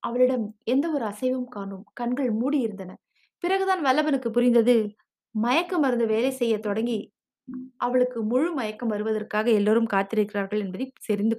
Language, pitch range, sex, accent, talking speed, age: Tamil, 210-265 Hz, female, native, 95 wpm, 20-39